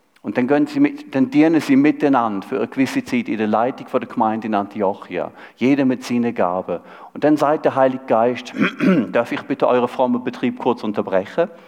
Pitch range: 115-150 Hz